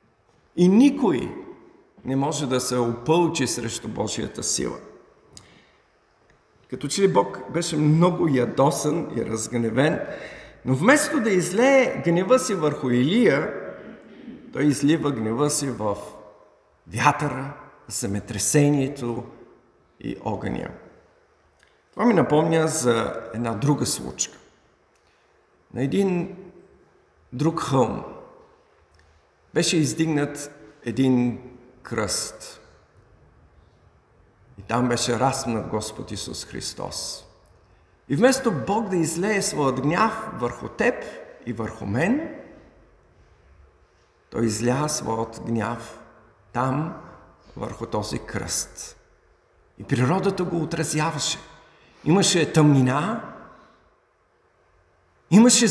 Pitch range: 115-170 Hz